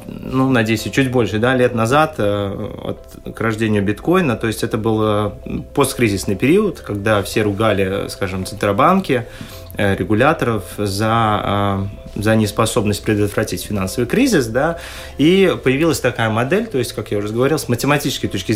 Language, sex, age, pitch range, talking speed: Russian, male, 20-39, 105-130 Hz, 140 wpm